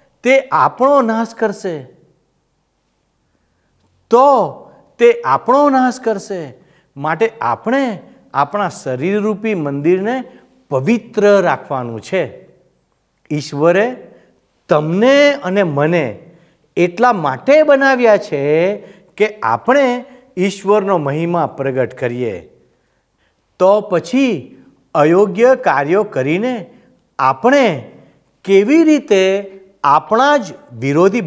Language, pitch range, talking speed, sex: Gujarati, 155-230 Hz, 80 wpm, male